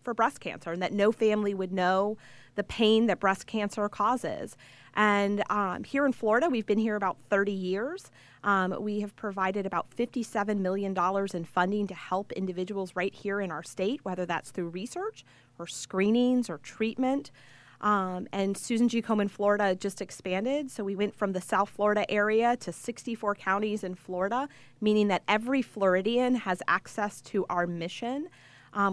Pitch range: 190-225 Hz